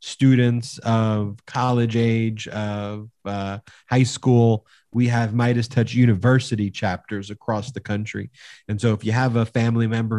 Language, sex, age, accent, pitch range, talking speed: English, male, 40-59, American, 105-120 Hz, 145 wpm